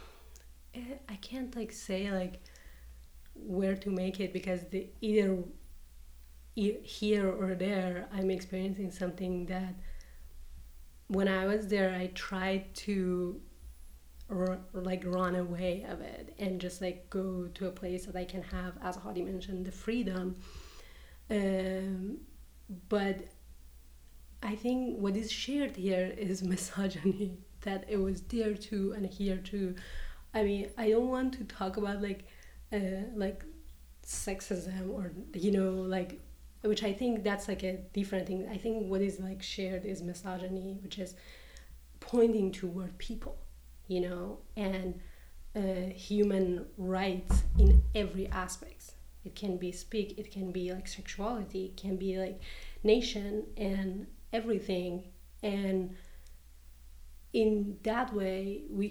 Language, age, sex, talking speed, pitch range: English, 30-49, female, 135 wpm, 180-200 Hz